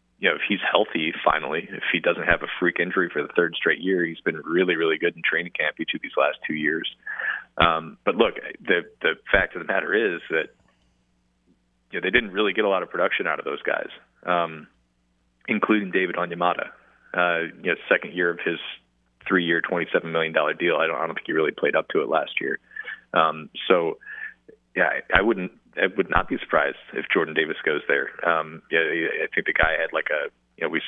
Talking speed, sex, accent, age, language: 220 wpm, male, American, 30-49, English